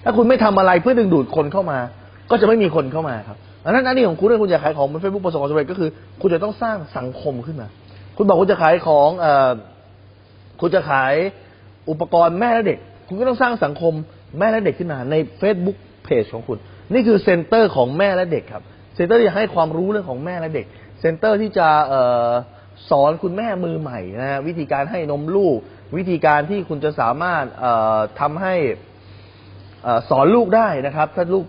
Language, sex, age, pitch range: Thai, male, 20-39, 105-175 Hz